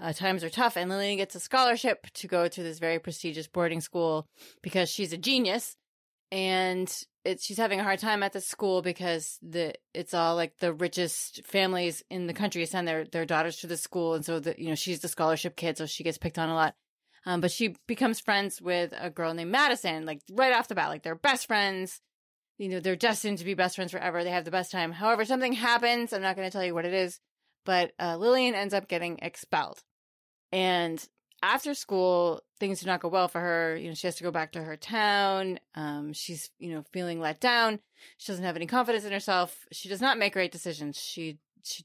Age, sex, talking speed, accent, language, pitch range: 20-39, female, 230 wpm, American, English, 165-195 Hz